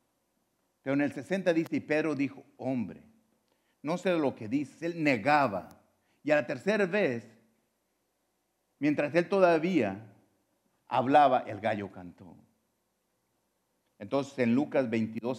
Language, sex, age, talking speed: English, male, 50-69, 125 wpm